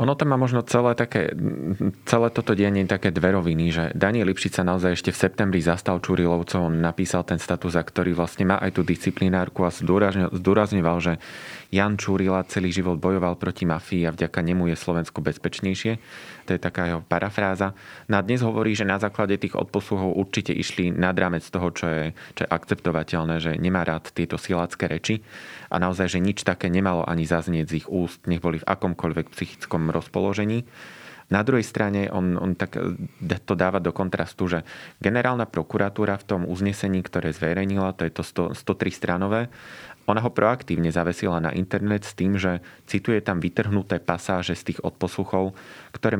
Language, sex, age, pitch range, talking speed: Slovak, male, 20-39, 85-100 Hz, 175 wpm